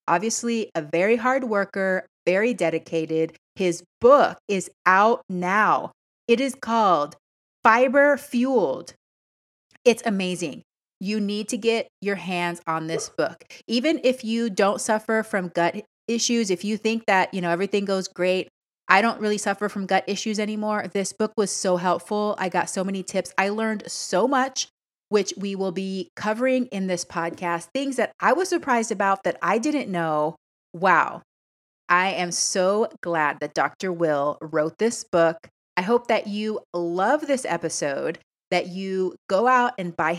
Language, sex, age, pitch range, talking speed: English, female, 30-49, 180-235 Hz, 165 wpm